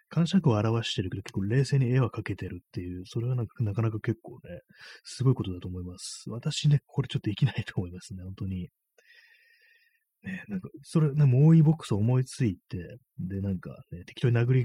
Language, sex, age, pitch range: Japanese, male, 30-49, 100-140 Hz